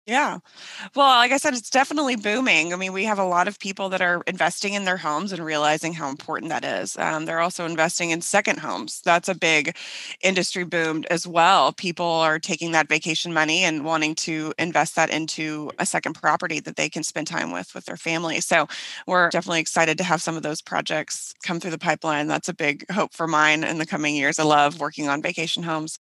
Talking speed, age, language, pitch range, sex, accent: 220 wpm, 20-39, English, 165-195 Hz, female, American